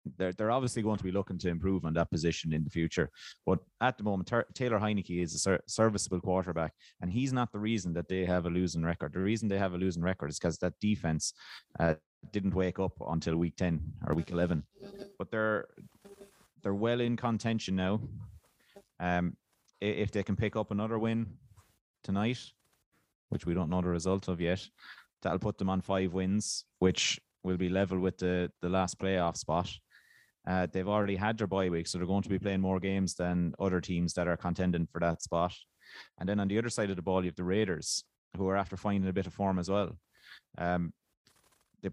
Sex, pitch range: male, 90-105 Hz